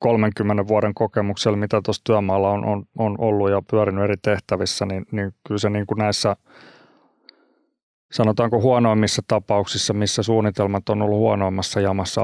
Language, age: Finnish, 30-49